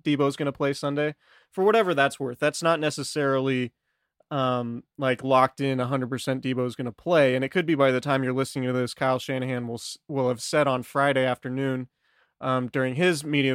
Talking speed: 215 wpm